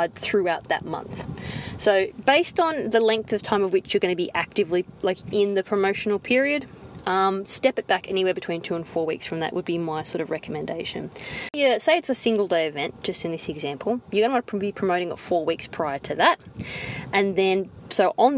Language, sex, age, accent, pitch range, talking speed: English, female, 20-39, Australian, 170-205 Hz, 220 wpm